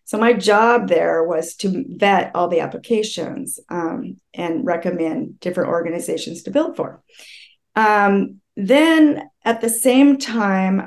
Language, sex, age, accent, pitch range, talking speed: English, female, 40-59, American, 180-240 Hz, 135 wpm